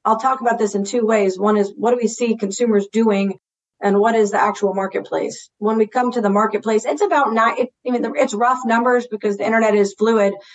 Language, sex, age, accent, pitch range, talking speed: English, female, 40-59, American, 200-230 Hz, 220 wpm